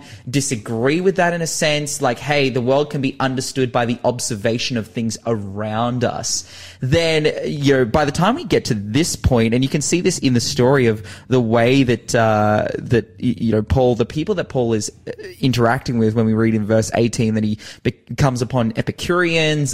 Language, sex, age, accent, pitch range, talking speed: English, male, 20-39, Australian, 115-135 Hz, 205 wpm